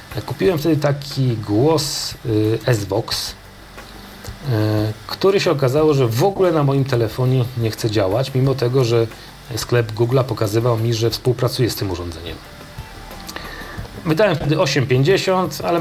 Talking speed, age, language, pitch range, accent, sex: 135 wpm, 40-59, Polish, 110-145 Hz, native, male